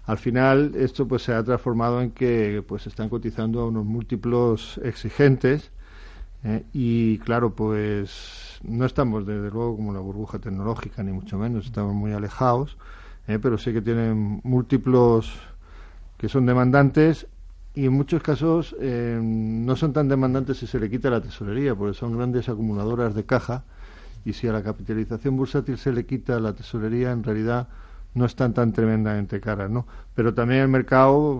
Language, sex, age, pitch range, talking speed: Spanish, male, 50-69, 105-125 Hz, 170 wpm